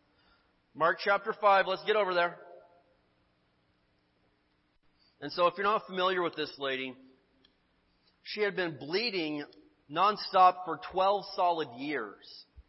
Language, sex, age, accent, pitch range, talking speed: English, male, 30-49, American, 160-210 Hz, 120 wpm